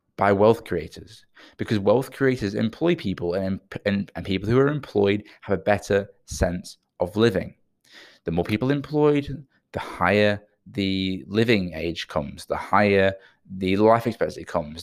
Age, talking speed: 20-39, 150 wpm